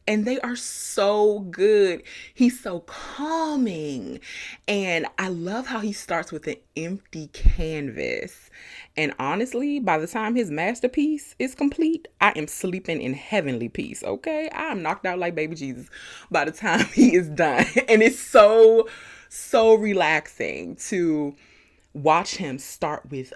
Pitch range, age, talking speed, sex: 155-250 Hz, 20-39, 145 wpm, female